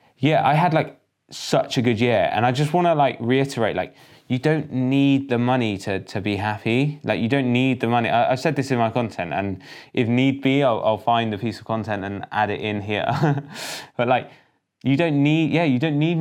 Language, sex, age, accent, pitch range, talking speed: English, male, 10-29, British, 100-135 Hz, 230 wpm